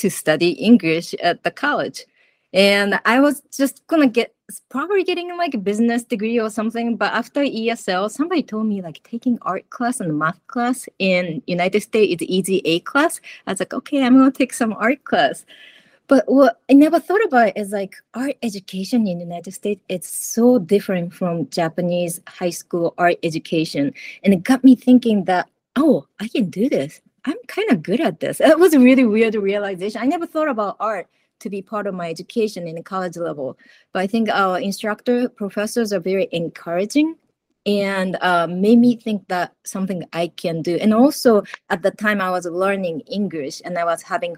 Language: English